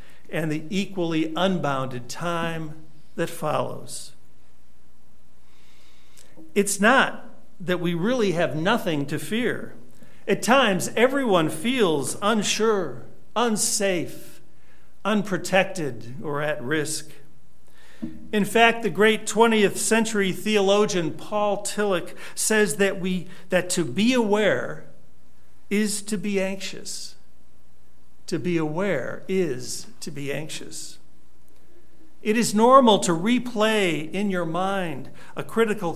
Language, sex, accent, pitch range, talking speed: English, male, American, 155-205 Hz, 105 wpm